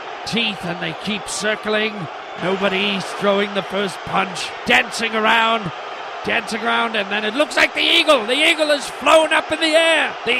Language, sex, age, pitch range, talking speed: English, male, 40-59, 255-295 Hz, 175 wpm